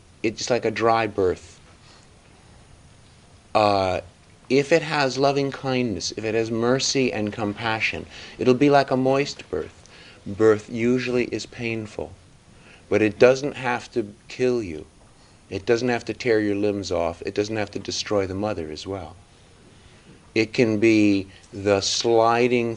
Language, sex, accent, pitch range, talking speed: English, male, American, 95-120 Hz, 145 wpm